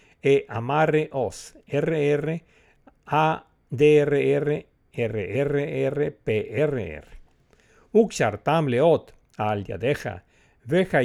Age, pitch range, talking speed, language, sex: 60-79, 120-160 Hz, 115 wpm, Portuguese, male